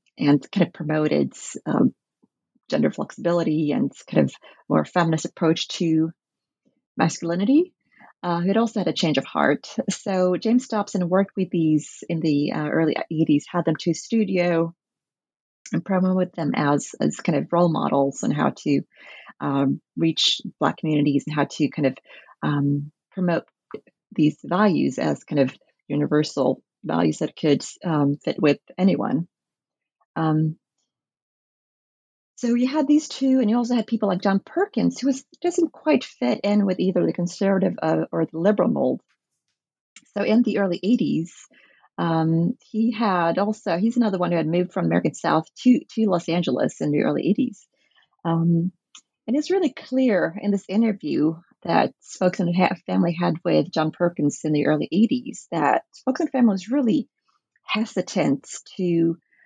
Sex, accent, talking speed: female, American, 155 wpm